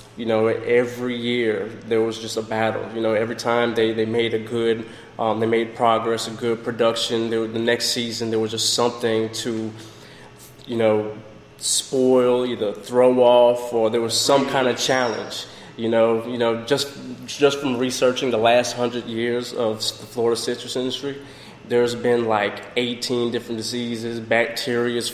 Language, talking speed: English, 170 wpm